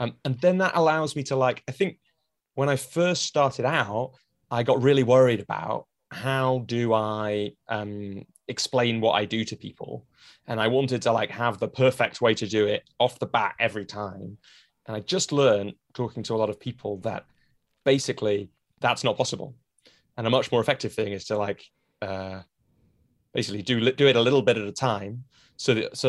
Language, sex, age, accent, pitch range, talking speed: English, male, 20-39, British, 105-135 Hz, 195 wpm